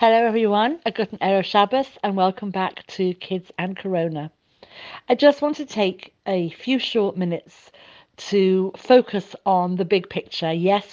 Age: 50-69